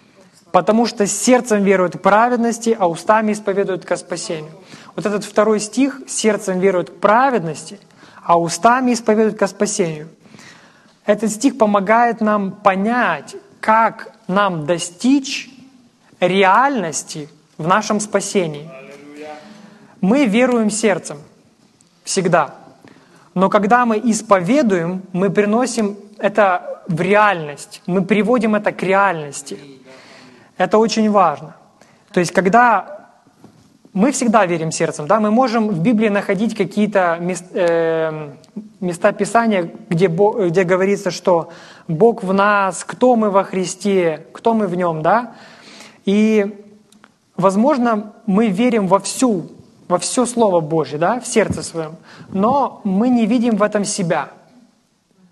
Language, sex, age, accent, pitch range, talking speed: Ukrainian, male, 20-39, native, 180-220 Hz, 125 wpm